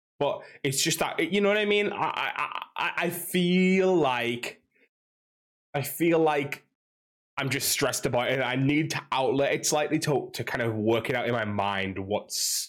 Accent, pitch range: British, 110-150 Hz